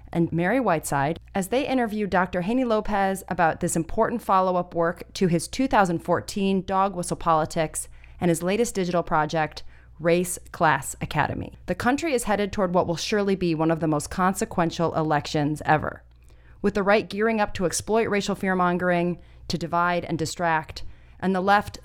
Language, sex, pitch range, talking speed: English, female, 160-205 Hz, 165 wpm